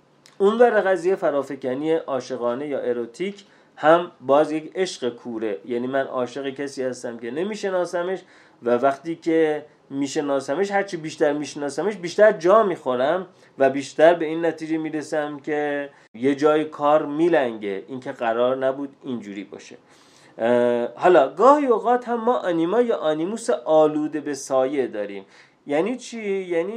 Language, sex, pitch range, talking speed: Persian, male, 135-180 Hz, 135 wpm